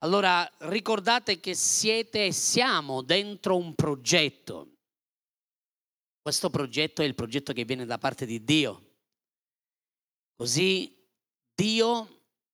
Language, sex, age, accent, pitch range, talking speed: Italian, male, 40-59, native, 145-205 Hz, 105 wpm